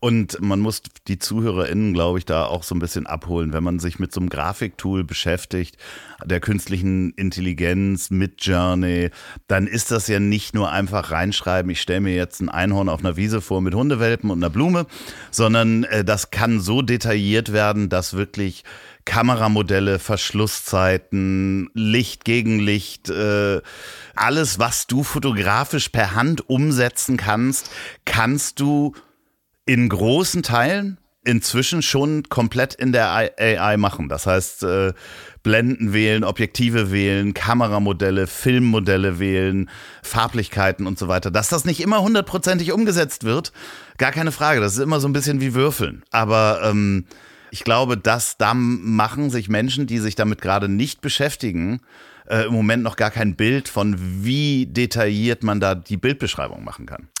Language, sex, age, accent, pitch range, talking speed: German, male, 50-69, German, 95-125 Hz, 150 wpm